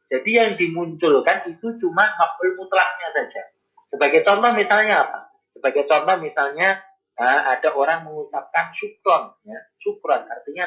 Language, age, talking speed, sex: Indonesian, 30-49, 125 wpm, male